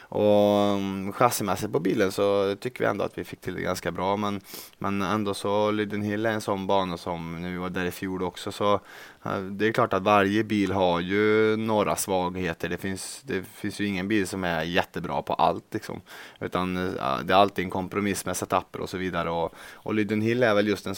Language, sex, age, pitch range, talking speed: English, male, 20-39, 90-100 Hz, 210 wpm